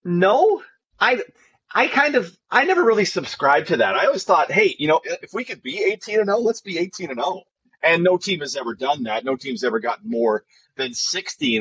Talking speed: 220 wpm